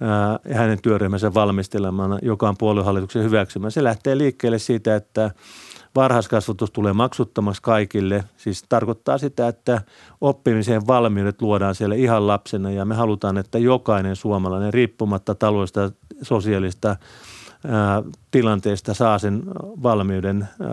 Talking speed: 120 wpm